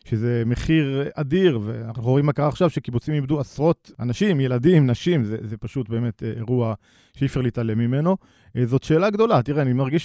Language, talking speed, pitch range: Hebrew, 175 wpm, 120-155 Hz